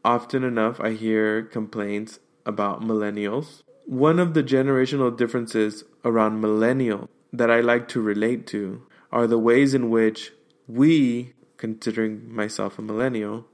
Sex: male